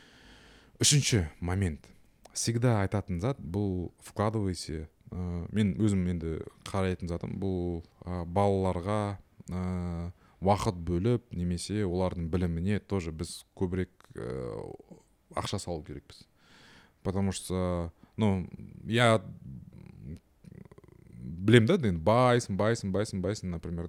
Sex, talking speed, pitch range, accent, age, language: male, 95 wpm, 85-100 Hz, native, 20-39, Russian